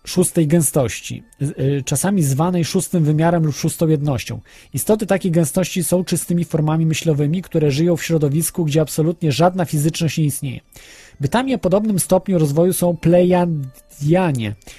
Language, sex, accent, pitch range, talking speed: Polish, male, native, 145-180 Hz, 135 wpm